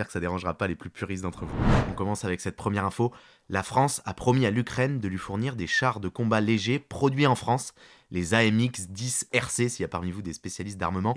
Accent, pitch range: French, 95-120 Hz